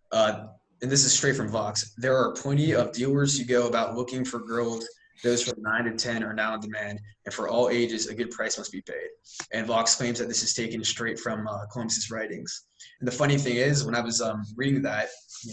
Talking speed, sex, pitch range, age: 235 wpm, male, 110-125 Hz, 20-39